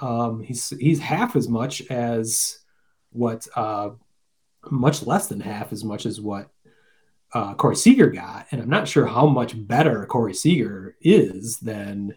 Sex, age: male, 30-49